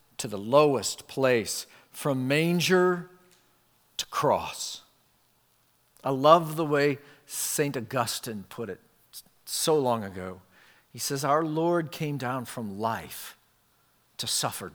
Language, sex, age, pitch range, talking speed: English, male, 50-69, 130-175 Hz, 120 wpm